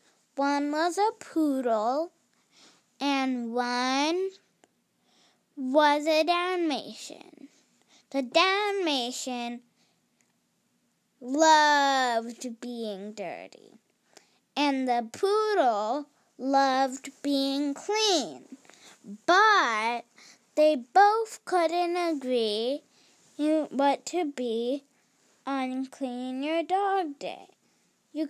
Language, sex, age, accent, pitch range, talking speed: English, female, 10-29, American, 255-340 Hz, 70 wpm